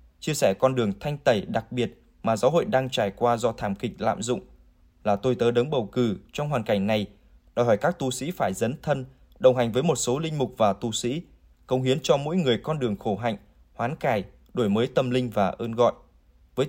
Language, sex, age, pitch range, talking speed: Vietnamese, male, 20-39, 110-130 Hz, 235 wpm